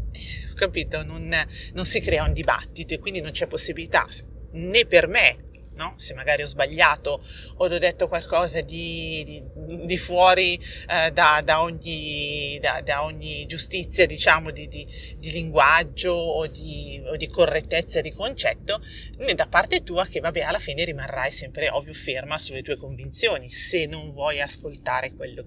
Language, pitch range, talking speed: Italian, 140-185 Hz, 160 wpm